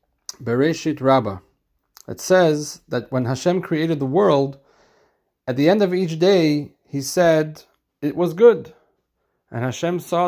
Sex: male